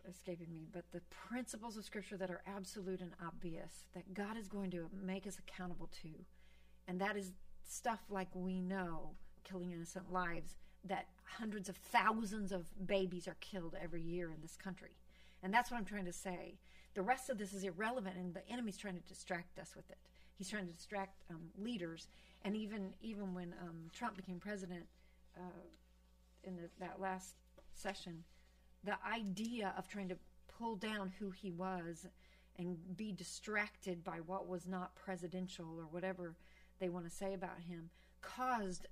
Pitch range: 175-200 Hz